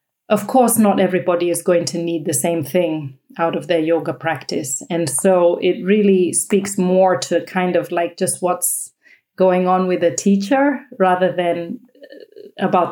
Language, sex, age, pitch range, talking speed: English, female, 30-49, 180-205 Hz, 165 wpm